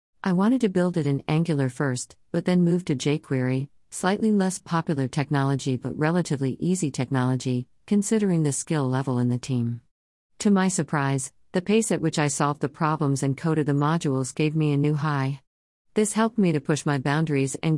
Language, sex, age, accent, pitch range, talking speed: English, female, 50-69, American, 135-165 Hz, 190 wpm